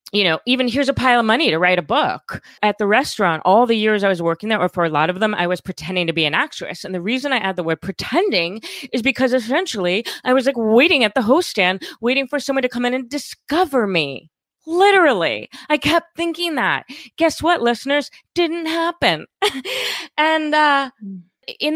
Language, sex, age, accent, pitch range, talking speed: English, female, 30-49, American, 190-280 Hz, 210 wpm